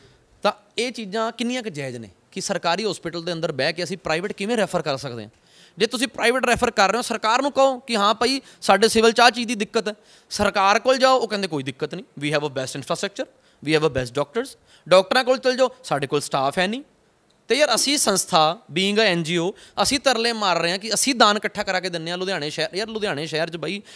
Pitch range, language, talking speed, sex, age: 155-220 Hz, Punjabi, 240 wpm, male, 20-39